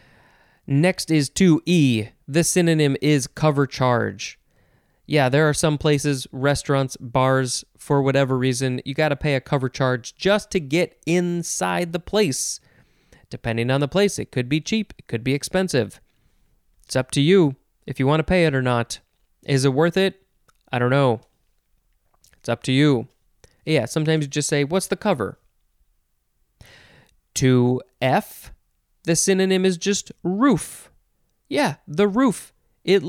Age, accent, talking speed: 20-39, American, 150 wpm